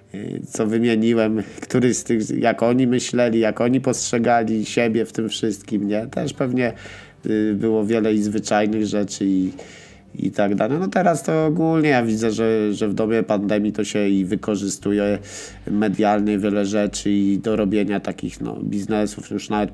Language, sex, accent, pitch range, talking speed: Polish, male, native, 100-120 Hz, 160 wpm